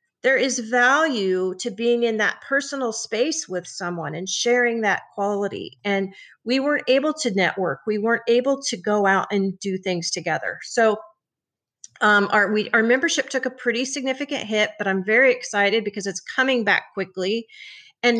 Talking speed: 170 wpm